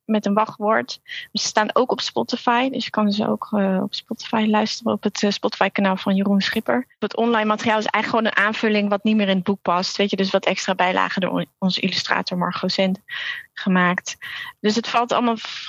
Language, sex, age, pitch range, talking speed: Dutch, female, 30-49, 200-235 Hz, 215 wpm